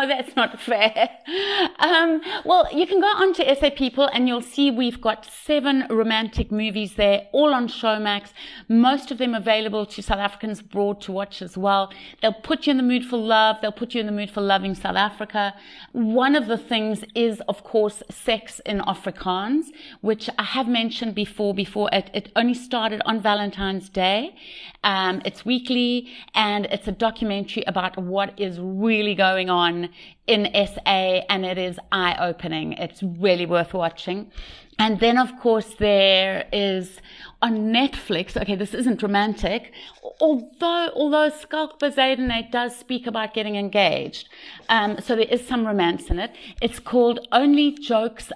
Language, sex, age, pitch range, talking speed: English, female, 30-49, 200-245 Hz, 165 wpm